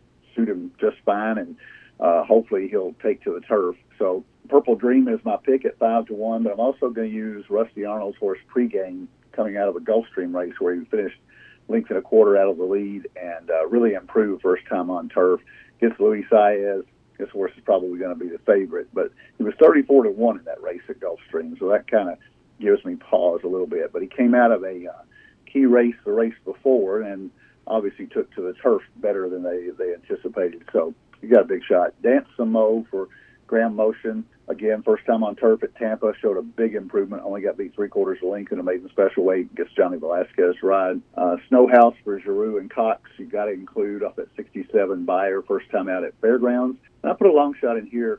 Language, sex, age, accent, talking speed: English, male, 50-69, American, 220 wpm